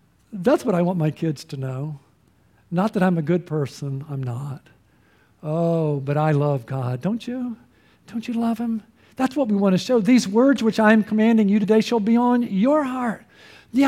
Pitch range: 180-245 Hz